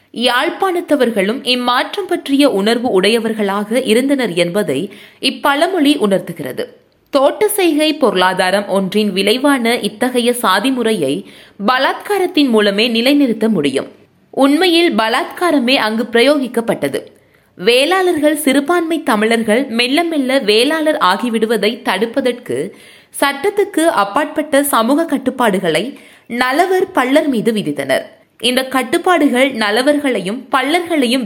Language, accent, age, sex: Tamil, native, 20-39, female